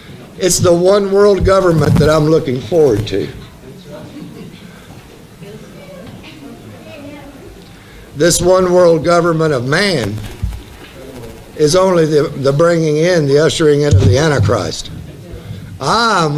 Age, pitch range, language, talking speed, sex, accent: 60-79, 135-200 Hz, English, 105 wpm, male, American